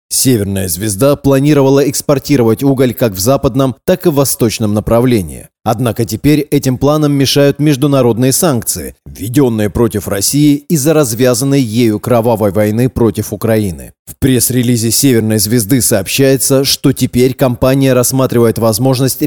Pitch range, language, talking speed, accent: 115-140 Hz, Russian, 125 wpm, native